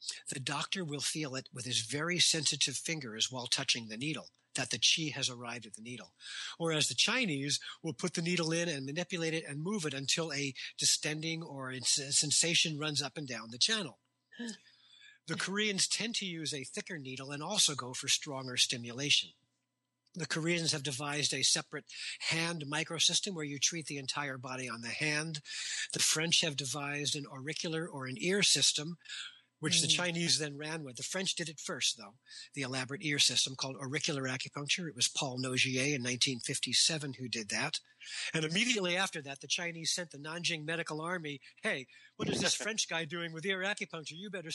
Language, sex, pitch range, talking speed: English, male, 135-170 Hz, 185 wpm